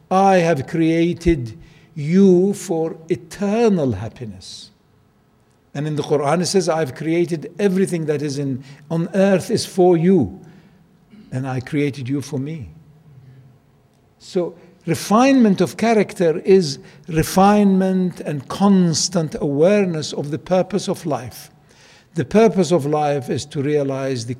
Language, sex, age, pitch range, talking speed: English, male, 60-79, 145-190 Hz, 125 wpm